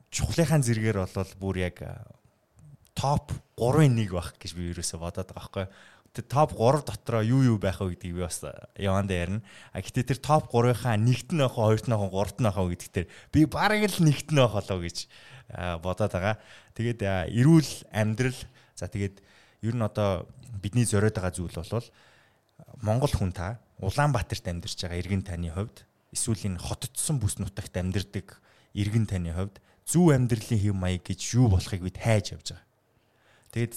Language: English